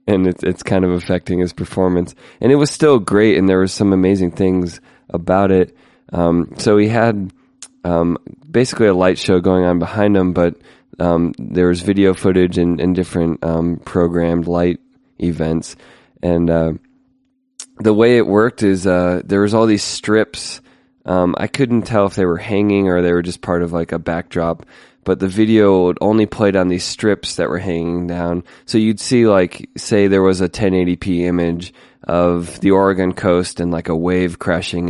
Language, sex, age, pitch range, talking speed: English, male, 20-39, 85-100 Hz, 180 wpm